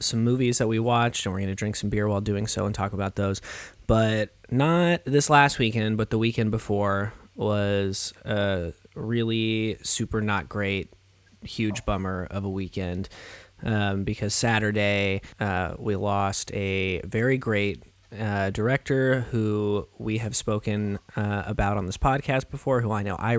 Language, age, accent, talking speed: English, 20-39, American, 165 wpm